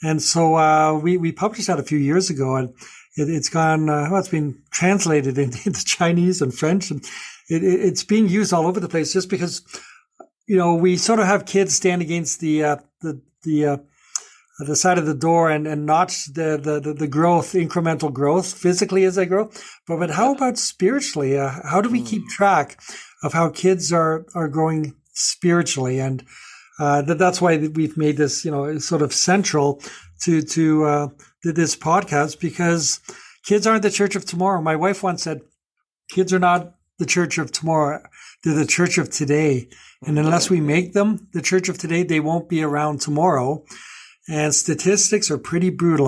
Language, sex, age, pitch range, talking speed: English, male, 60-79, 150-180 Hz, 190 wpm